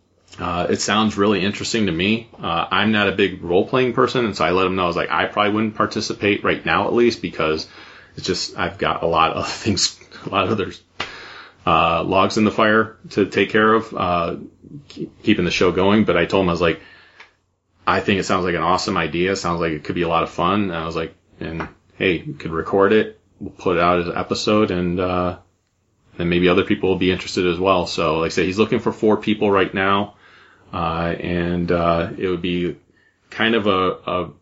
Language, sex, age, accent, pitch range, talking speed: English, male, 30-49, American, 90-110 Hz, 235 wpm